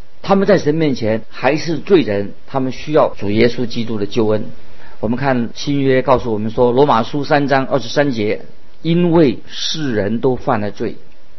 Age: 50-69